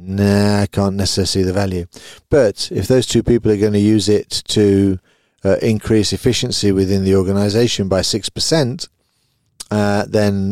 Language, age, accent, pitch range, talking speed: English, 40-59, British, 95-110 Hz, 165 wpm